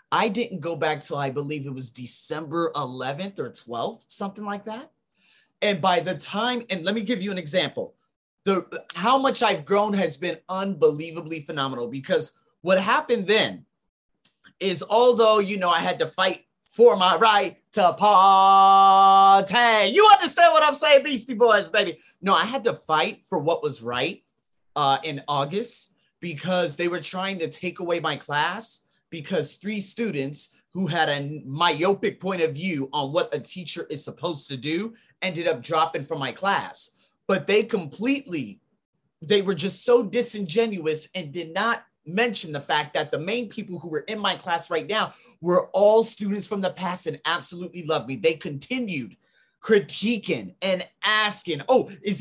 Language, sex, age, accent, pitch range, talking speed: English, male, 30-49, American, 160-215 Hz, 170 wpm